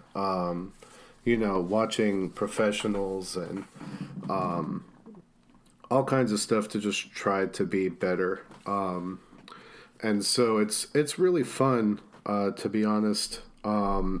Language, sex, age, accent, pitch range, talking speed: English, male, 40-59, American, 100-125 Hz, 125 wpm